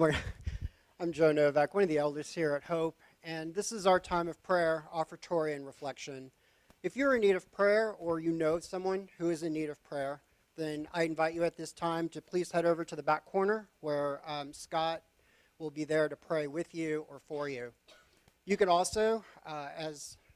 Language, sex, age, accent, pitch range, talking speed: English, male, 40-59, American, 150-180 Hz, 205 wpm